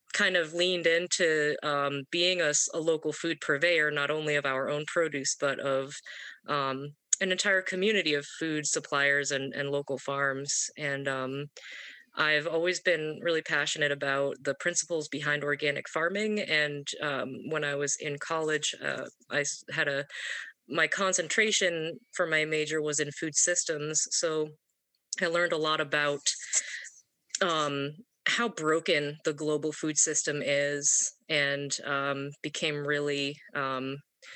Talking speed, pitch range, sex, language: 145 wpm, 140-160 Hz, female, English